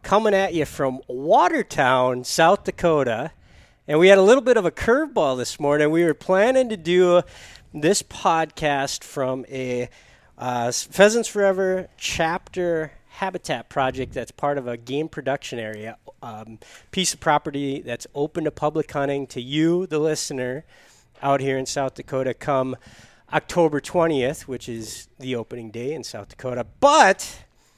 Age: 40-59